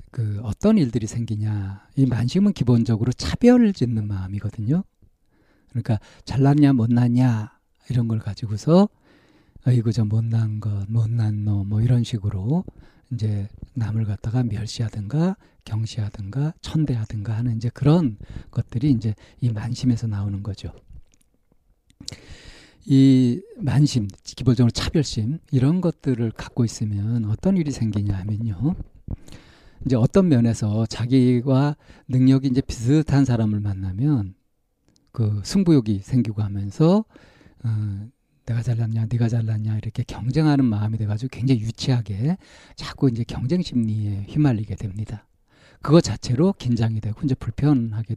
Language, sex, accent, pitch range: Korean, male, native, 110-135 Hz